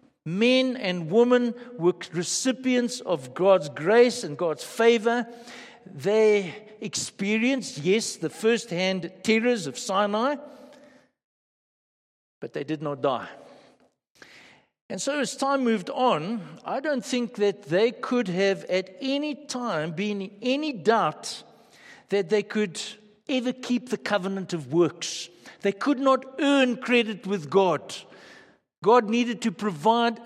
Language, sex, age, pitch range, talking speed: English, male, 60-79, 180-240 Hz, 125 wpm